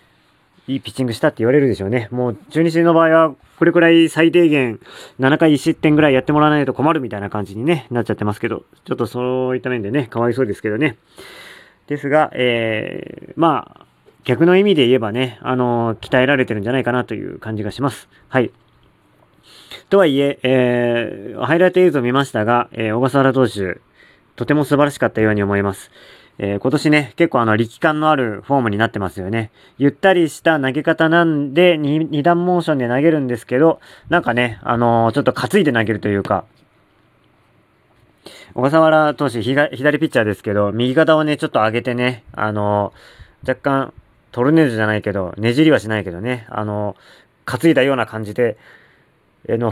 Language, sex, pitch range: Japanese, male, 115-155 Hz